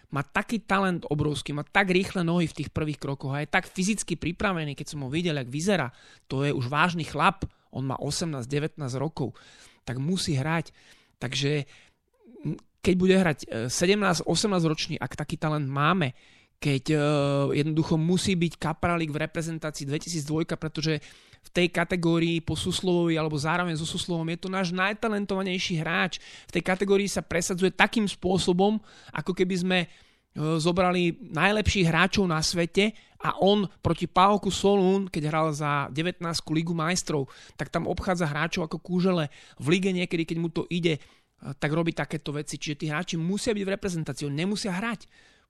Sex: male